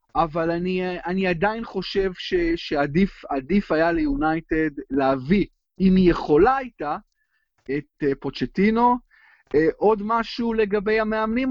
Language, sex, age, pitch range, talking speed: Hebrew, male, 30-49, 155-200 Hz, 105 wpm